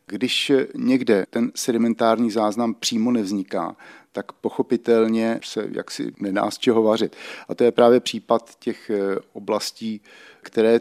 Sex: male